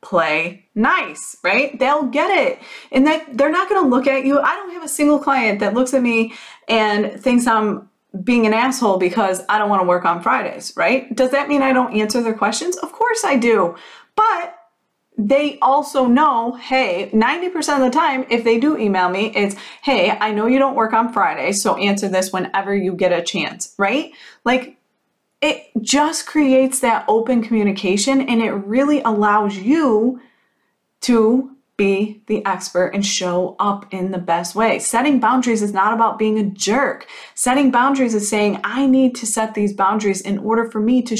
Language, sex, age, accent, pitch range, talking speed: English, female, 30-49, American, 200-270 Hz, 190 wpm